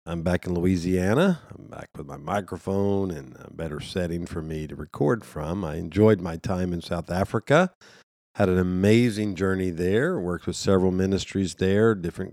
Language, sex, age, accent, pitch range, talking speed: English, male, 50-69, American, 85-100 Hz, 175 wpm